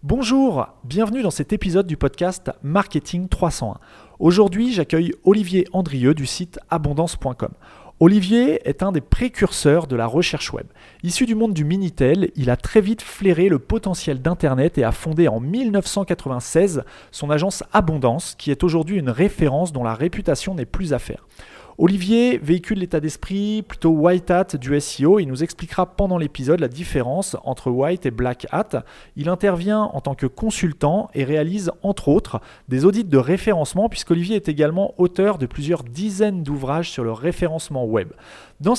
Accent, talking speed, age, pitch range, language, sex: French, 165 wpm, 30-49, 140-190 Hz, French, male